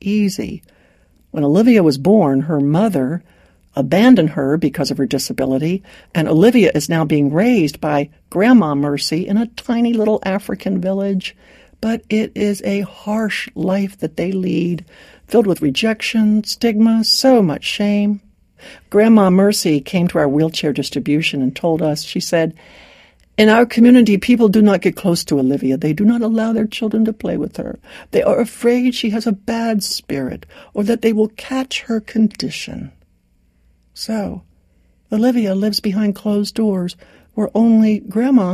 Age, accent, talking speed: 60-79, American, 155 wpm